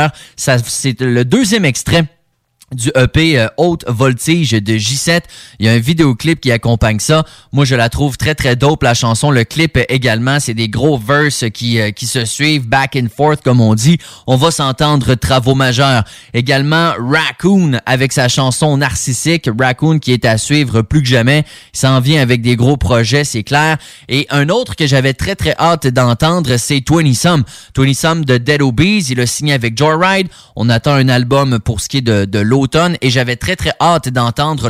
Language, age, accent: English, 20-39, Canadian